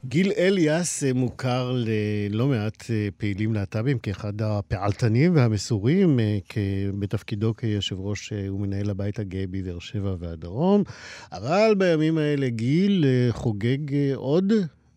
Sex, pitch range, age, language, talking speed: male, 100-130 Hz, 50-69, Hebrew, 100 wpm